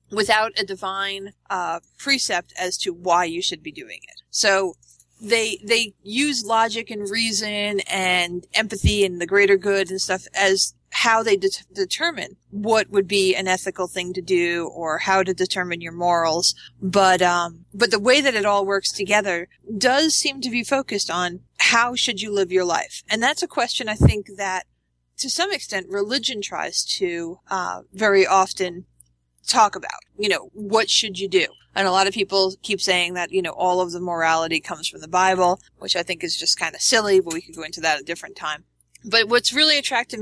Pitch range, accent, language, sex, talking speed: 180-230 Hz, American, English, female, 195 wpm